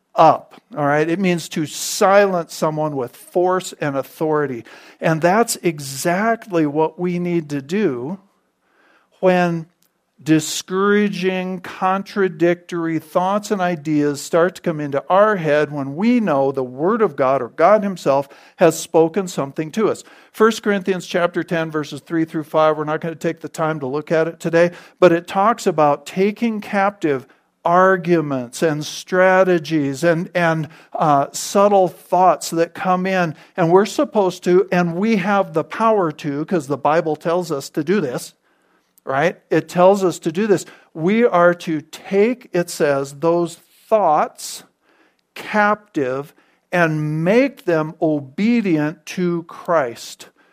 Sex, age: male, 50-69